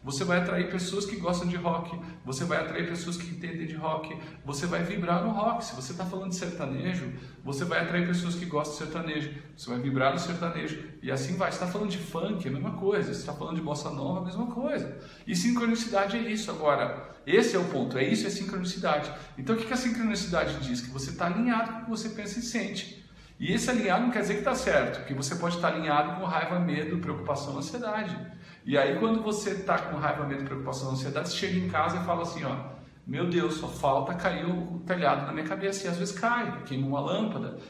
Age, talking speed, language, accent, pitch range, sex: 40-59, 235 wpm, English, Brazilian, 150-200 Hz, male